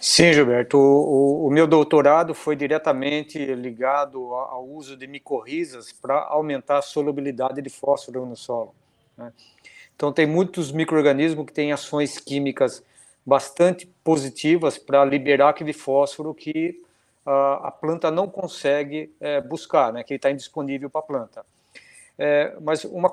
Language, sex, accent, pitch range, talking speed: Portuguese, male, Brazilian, 130-155 Hz, 145 wpm